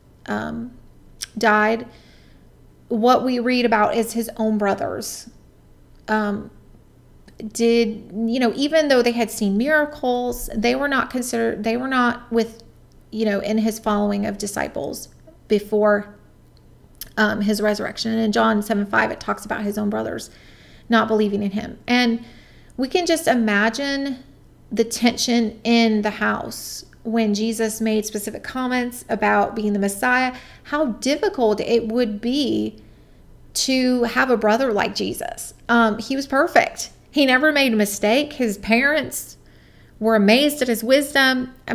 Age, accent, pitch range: 30-49, American, 215-255 Hz